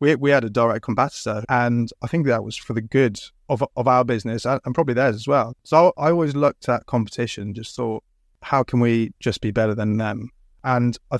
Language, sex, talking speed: English, male, 220 wpm